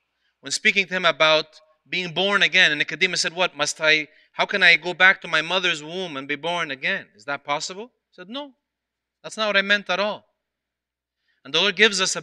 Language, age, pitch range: English, 30-49, 165-215 Hz